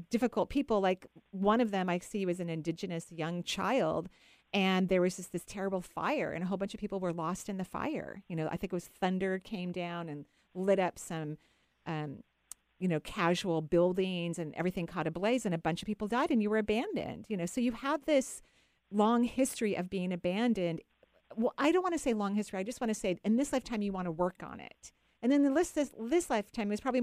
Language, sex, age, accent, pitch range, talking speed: English, female, 40-59, American, 170-220 Hz, 235 wpm